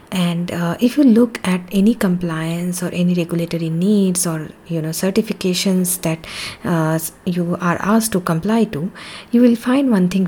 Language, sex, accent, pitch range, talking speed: English, female, Indian, 175-215 Hz, 170 wpm